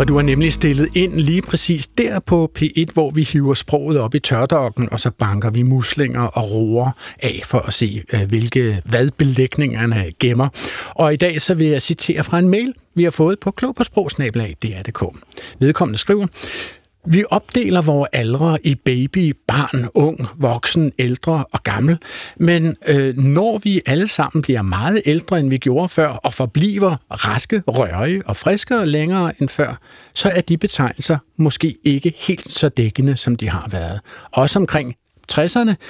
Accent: native